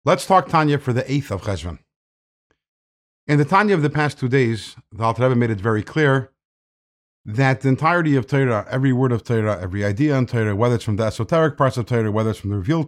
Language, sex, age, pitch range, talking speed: English, male, 50-69, 120-170 Hz, 225 wpm